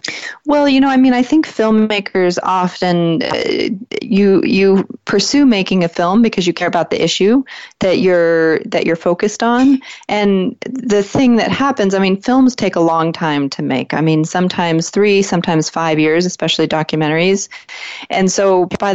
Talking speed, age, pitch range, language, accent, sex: 170 wpm, 30-49, 165-210 Hz, English, American, female